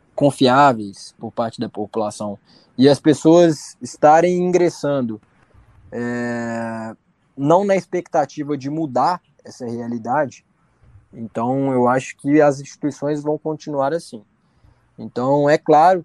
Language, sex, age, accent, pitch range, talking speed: Portuguese, male, 20-39, Brazilian, 120-155 Hz, 110 wpm